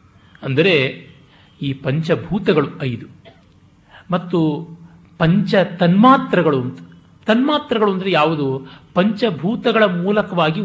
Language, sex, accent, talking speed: Kannada, male, native, 70 wpm